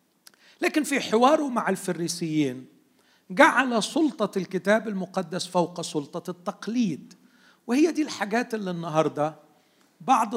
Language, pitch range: Arabic, 155-215 Hz